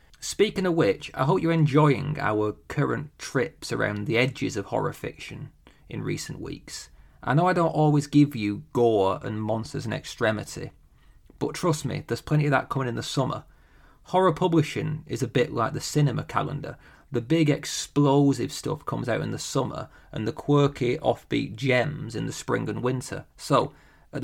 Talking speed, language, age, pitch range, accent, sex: 180 wpm, English, 30-49, 120-150 Hz, British, male